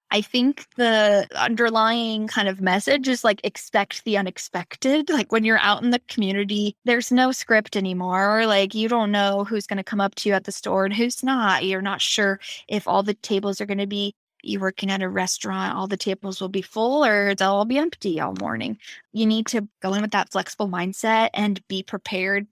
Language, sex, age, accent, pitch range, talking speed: English, female, 10-29, American, 195-220 Hz, 215 wpm